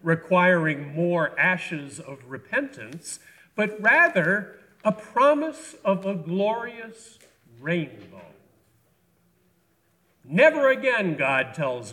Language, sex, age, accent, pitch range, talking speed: English, male, 50-69, American, 155-215 Hz, 85 wpm